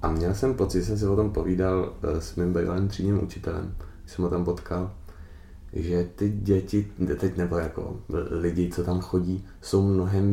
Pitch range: 85-95 Hz